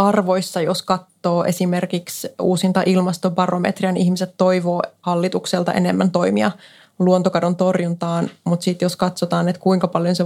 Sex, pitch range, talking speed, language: female, 175-200 Hz, 125 wpm, Finnish